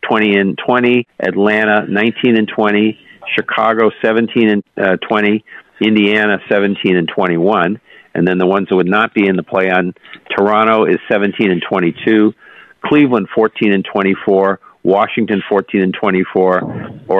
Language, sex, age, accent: English, male, 50-69, American